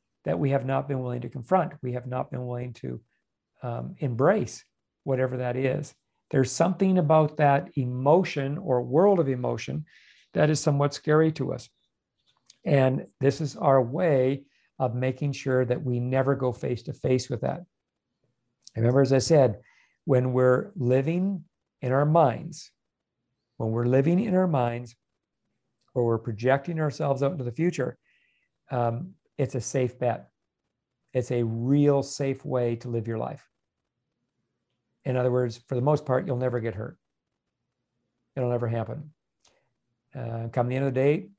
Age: 50-69